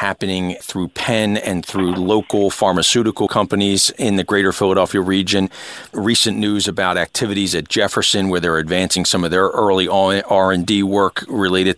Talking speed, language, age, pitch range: 150 wpm, English, 40-59, 90-105 Hz